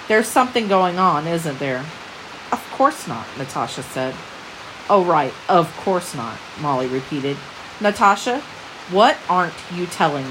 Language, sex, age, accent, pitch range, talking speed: English, female, 40-59, American, 175-225 Hz, 135 wpm